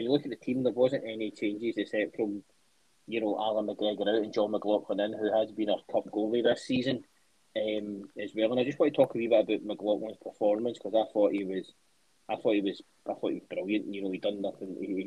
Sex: male